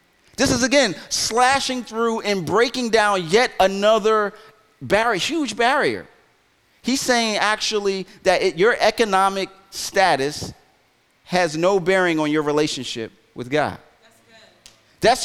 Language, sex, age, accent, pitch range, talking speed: English, male, 30-49, American, 165-220 Hz, 115 wpm